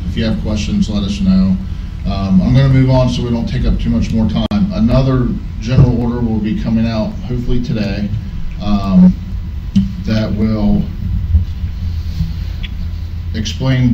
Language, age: English, 40-59